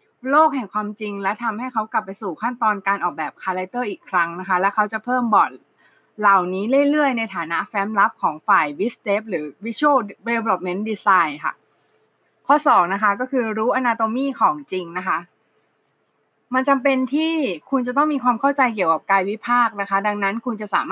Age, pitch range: 20-39, 195-255 Hz